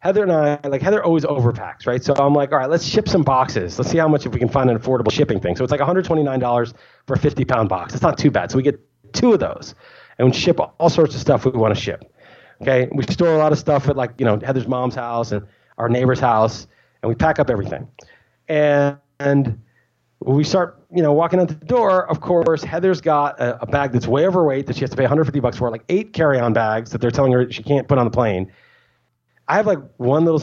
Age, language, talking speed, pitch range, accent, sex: 30-49, English, 250 wpm, 125-185 Hz, American, male